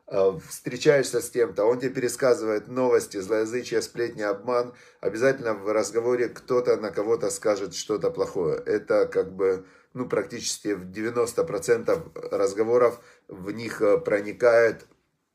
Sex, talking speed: male, 120 wpm